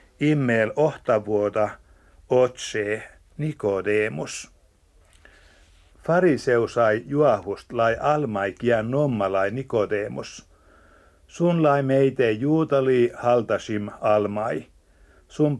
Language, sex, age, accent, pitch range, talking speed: Finnish, male, 60-79, native, 100-140 Hz, 70 wpm